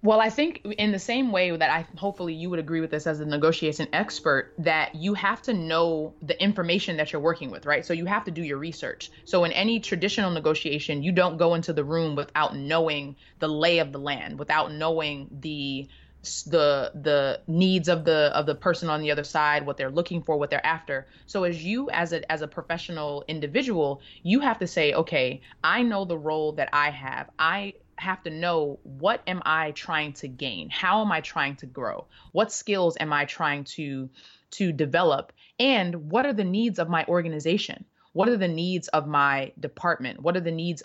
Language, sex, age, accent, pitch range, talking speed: English, female, 20-39, American, 145-175 Hz, 210 wpm